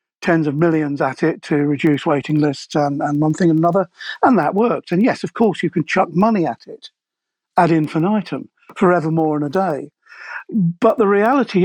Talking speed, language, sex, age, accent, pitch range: 195 wpm, English, male, 60-79, British, 155-195 Hz